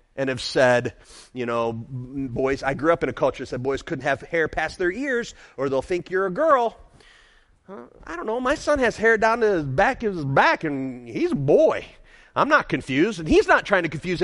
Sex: male